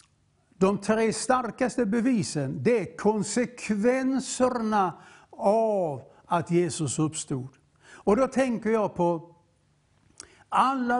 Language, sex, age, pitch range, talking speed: English, male, 60-79, 165-225 Hz, 95 wpm